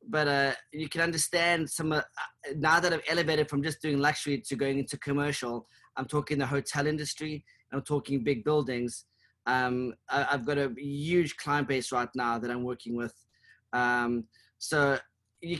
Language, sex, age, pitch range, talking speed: English, male, 30-49, 135-165 Hz, 175 wpm